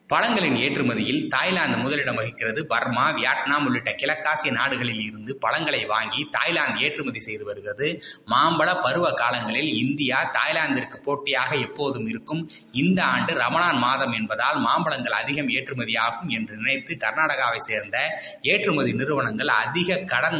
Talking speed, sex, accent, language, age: 120 wpm, male, native, Tamil, 20-39